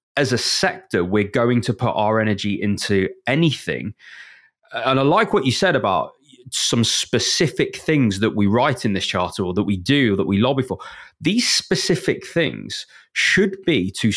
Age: 20-39